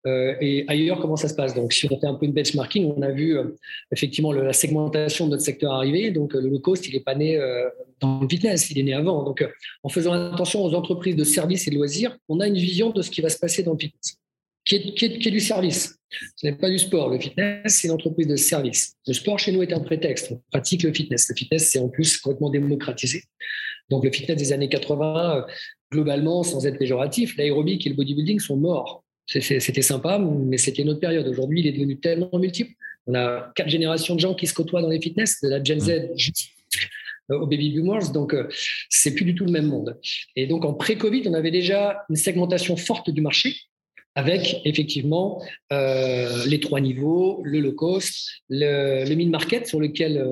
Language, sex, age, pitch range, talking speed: French, male, 40-59, 140-180 Hz, 230 wpm